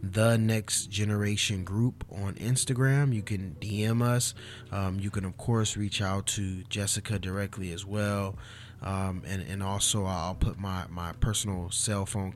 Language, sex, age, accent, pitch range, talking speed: English, male, 20-39, American, 95-110 Hz, 160 wpm